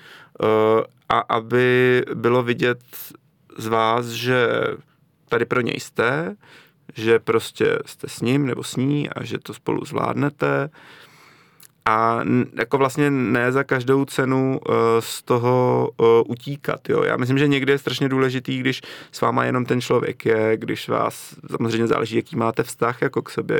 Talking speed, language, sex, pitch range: 150 wpm, Czech, male, 115-135 Hz